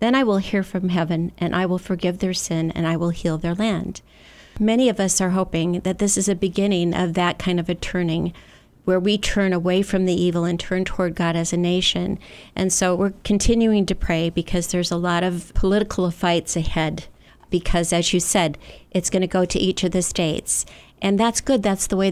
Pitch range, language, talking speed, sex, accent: 170-195 Hz, English, 220 wpm, female, American